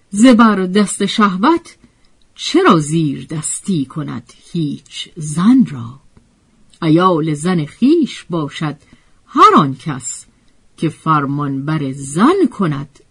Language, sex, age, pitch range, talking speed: Persian, female, 50-69, 145-230 Hz, 95 wpm